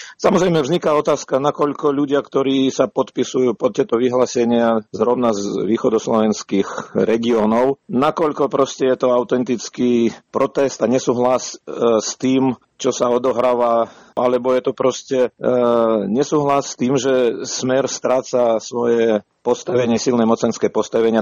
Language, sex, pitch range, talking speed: Slovak, male, 110-130 Hz, 125 wpm